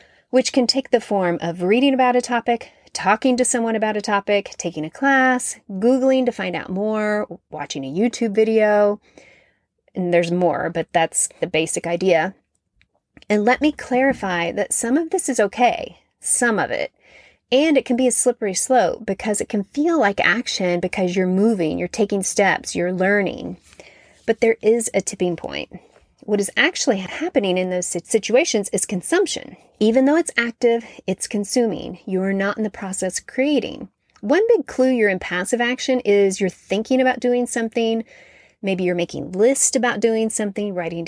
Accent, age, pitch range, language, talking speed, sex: American, 30-49, 190-250 Hz, English, 175 wpm, female